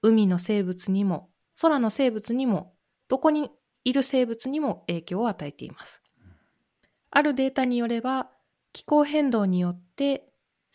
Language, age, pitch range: Japanese, 20-39, 185-280 Hz